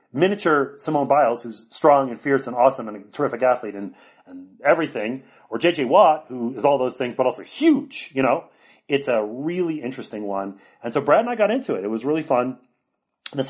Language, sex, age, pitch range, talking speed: English, male, 30-49, 110-150 Hz, 210 wpm